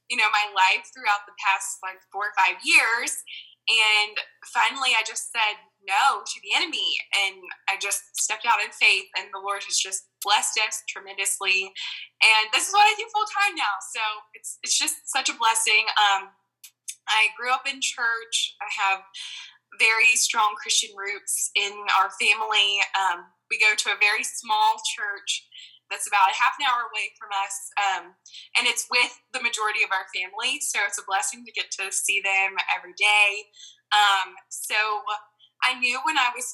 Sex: female